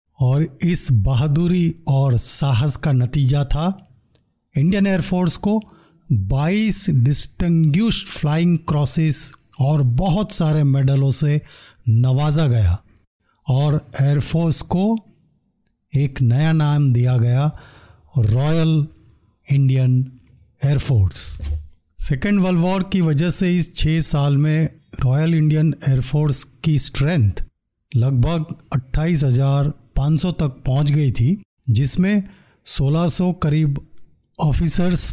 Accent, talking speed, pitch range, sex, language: native, 100 wpm, 130-170 Hz, male, Hindi